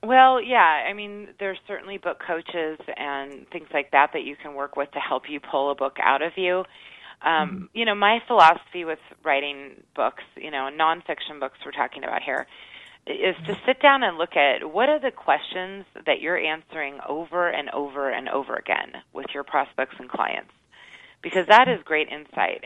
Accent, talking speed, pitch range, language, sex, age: American, 190 wpm, 145-185 Hz, English, female, 30-49